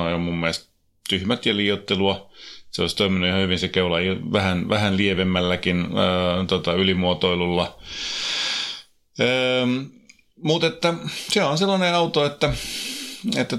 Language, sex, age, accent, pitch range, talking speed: Finnish, male, 30-49, native, 95-140 Hz, 135 wpm